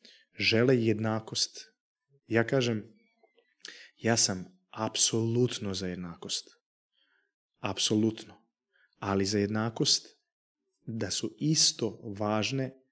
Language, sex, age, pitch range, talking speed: Croatian, male, 30-49, 110-145 Hz, 80 wpm